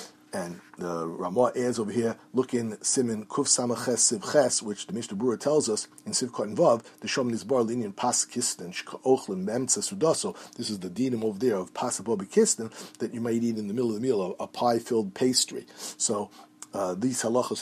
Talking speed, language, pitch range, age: 165 wpm, English, 110-145 Hz, 50-69